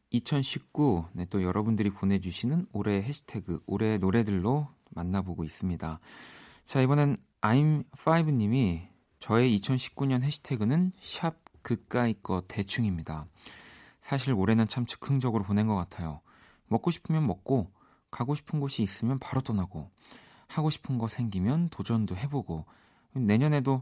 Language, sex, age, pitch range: Korean, male, 40-59, 95-135 Hz